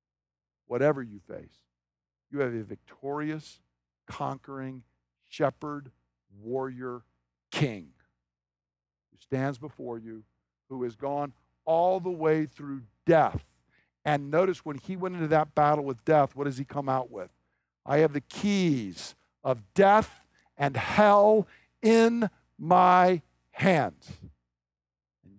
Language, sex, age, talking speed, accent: English, male, 50-69, 120 wpm, American